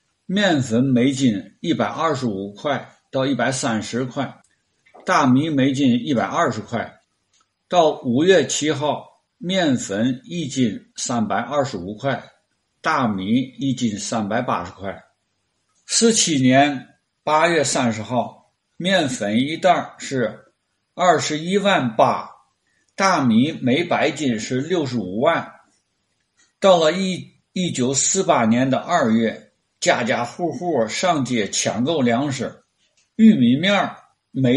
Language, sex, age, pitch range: Chinese, male, 60-79, 125-190 Hz